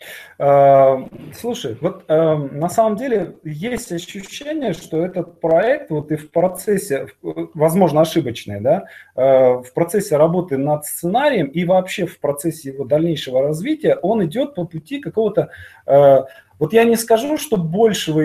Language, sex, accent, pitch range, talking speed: Russian, male, native, 145-200 Hz, 130 wpm